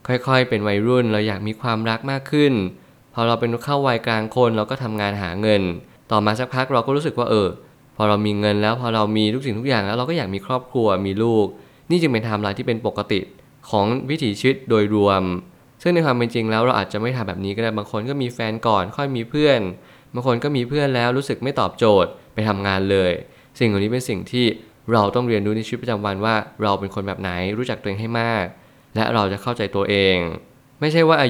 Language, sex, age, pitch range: Thai, male, 20-39, 105-125 Hz